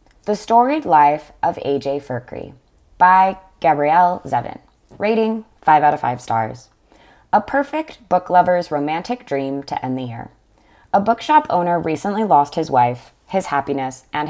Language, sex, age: English, female, 20-39